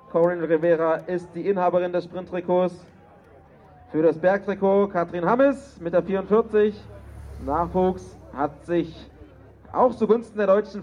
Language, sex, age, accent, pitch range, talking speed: German, male, 30-49, German, 160-210 Hz, 120 wpm